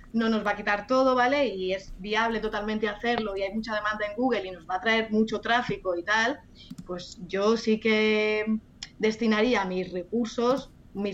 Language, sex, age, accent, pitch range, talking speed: Spanish, female, 20-39, Spanish, 195-235 Hz, 185 wpm